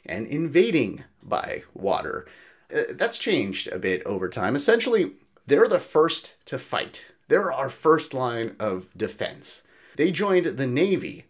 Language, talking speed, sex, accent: English, 145 wpm, male, American